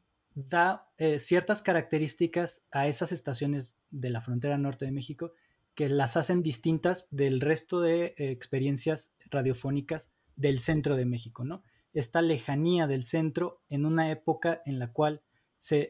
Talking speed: 145 wpm